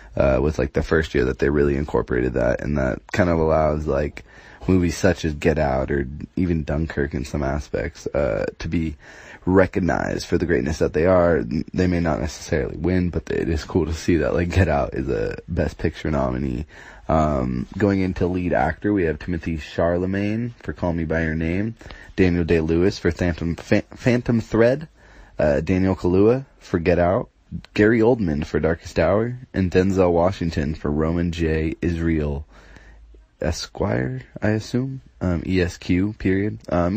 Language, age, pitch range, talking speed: English, 20-39, 75-95 Hz, 175 wpm